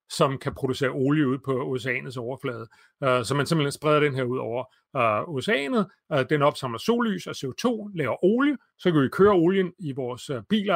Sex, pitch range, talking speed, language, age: male, 135-175 Hz, 180 wpm, Danish, 30-49